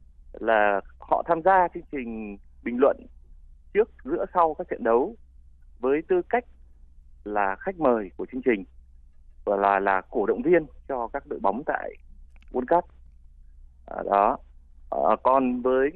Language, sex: Vietnamese, male